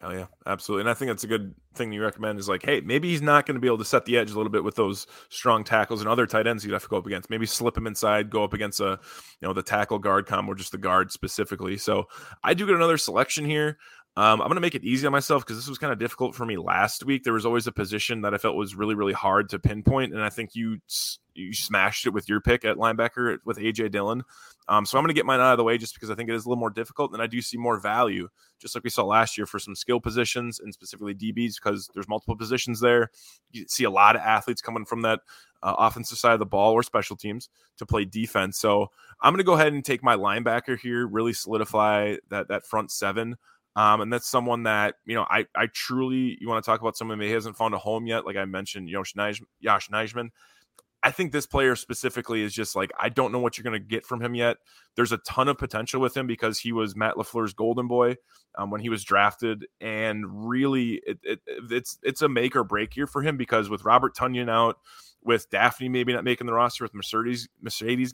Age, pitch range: 20-39, 105-125 Hz